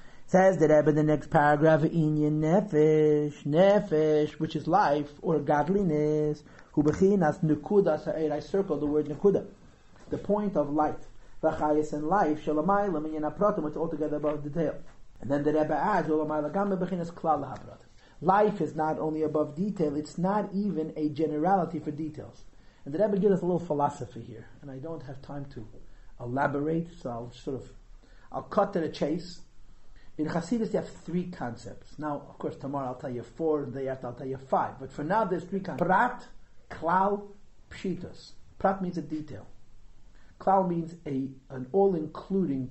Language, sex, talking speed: English, male, 170 wpm